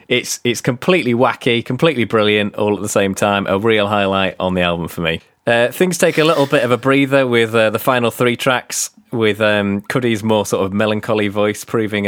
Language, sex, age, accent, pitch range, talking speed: English, male, 30-49, British, 95-125 Hz, 215 wpm